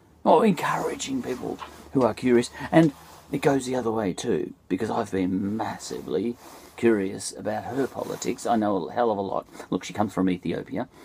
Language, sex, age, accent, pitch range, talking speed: English, male, 50-69, Australian, 95-155 Hz, 180 wpm